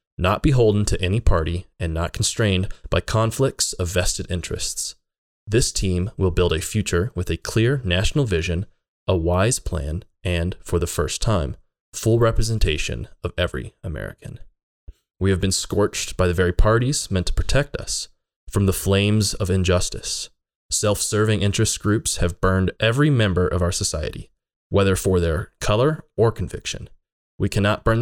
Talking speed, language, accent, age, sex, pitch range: 155 wpm, English, American, 20-39, male, 90-110 Hz